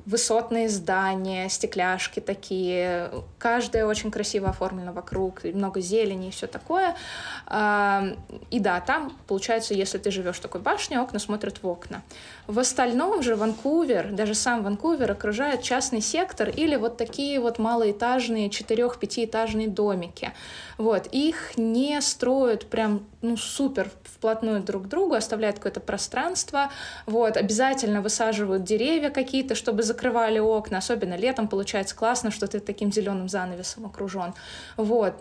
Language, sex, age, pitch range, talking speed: Russian, female, 20-39, 200-245 Hz, 135 wpm